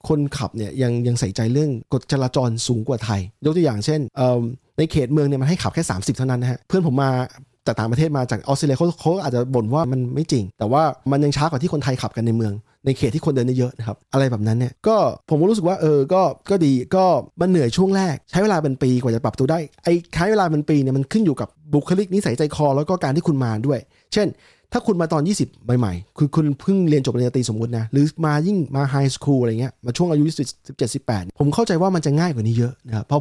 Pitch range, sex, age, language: 125-165 Hz, male, 20-39, Thai